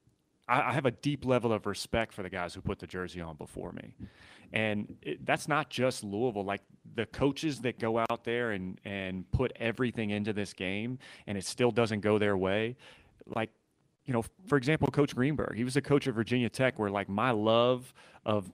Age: 30-49